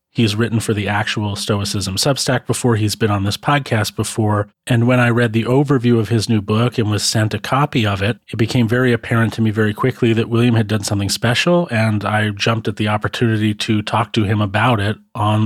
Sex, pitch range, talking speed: male, 105-120 Hz, 225 wpm